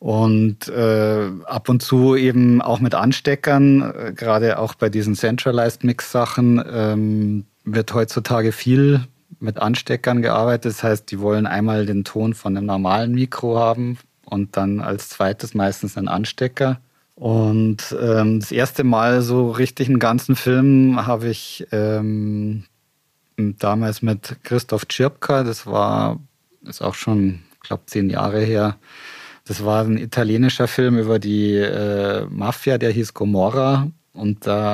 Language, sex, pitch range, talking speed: German, male, 105-125 Hz, 145 wpm